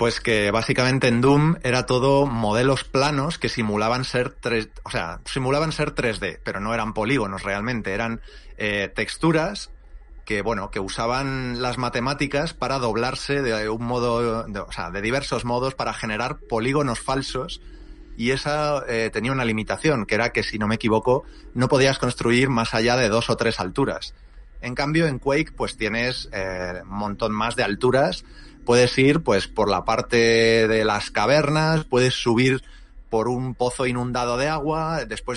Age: 30-49